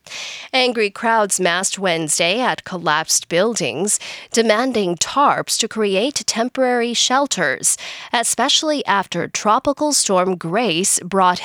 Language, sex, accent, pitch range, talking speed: English, female, American, 180-250 Hz, 100 wpm